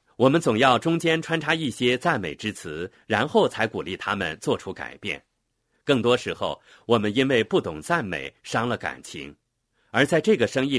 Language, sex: Chinese, male